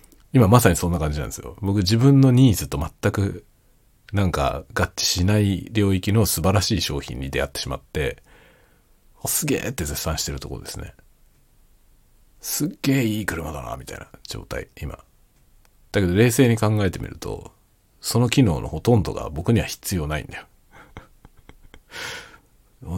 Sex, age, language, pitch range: male, 40-59, Japanese, 75-105 Hz